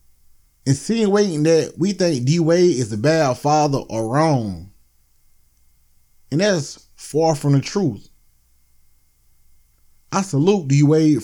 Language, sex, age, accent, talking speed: English, male, 20-39, American, 115 wpm